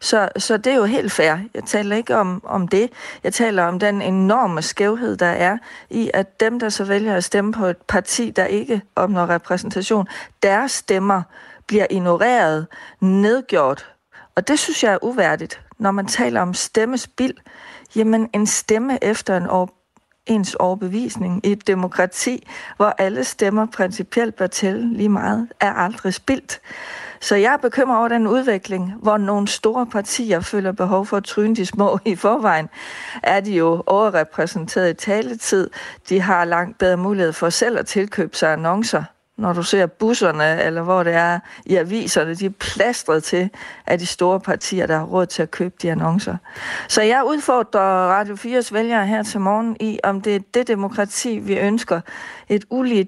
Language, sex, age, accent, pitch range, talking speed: Danish, female, 40-59, native, 185-220 Hz, 175 wpm